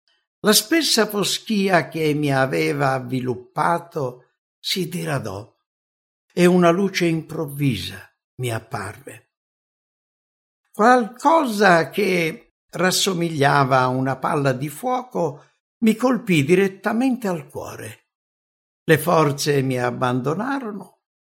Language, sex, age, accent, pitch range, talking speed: English, male, 60-79, Italian, 130-195 Hz, 90 wpm